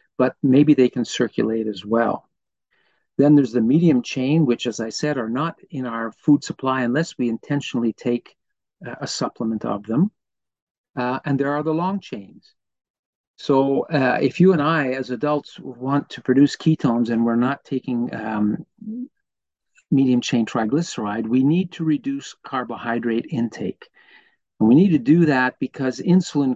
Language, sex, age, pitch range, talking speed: English, male, 50-69, 120-150 Hz, 160 wpm